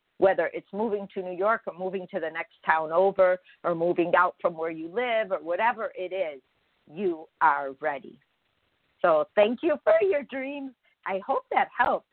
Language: English